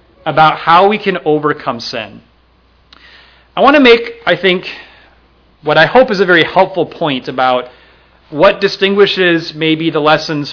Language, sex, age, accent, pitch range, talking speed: English, male, 30-49, American, 140-185 Hz, 150 wpm